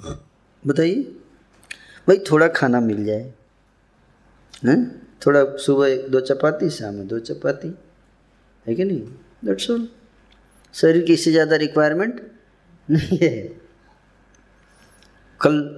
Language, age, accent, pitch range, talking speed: Hindi, 20-39, native, 135-170 Hz, 105 wpm